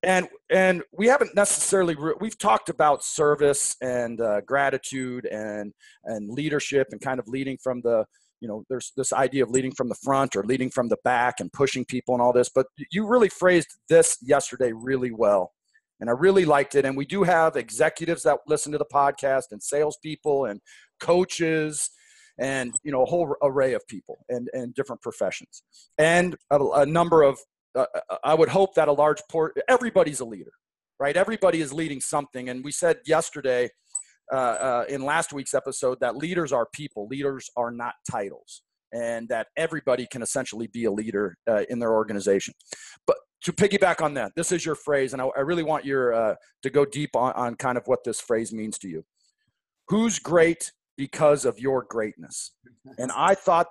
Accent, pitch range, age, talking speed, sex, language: American, 125-165 Hz, 40-59, 190 wpm, male, English